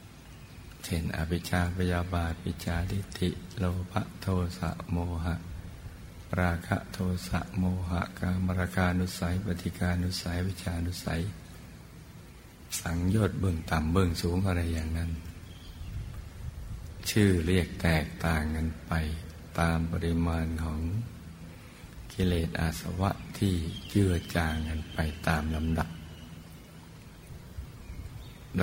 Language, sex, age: Thai, male, 60-79